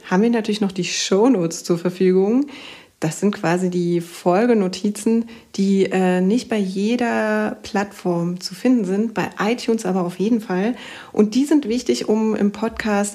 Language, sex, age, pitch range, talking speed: German, female, 30-49, 185-220 Hz, 160 wpm